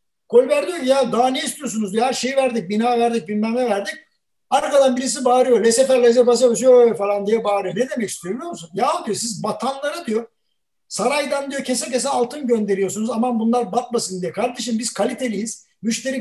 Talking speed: 185 wpm